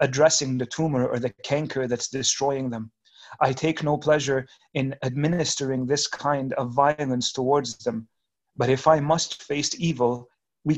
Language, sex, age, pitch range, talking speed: English, male, 30-49, 130-145 Hz, 155 wpm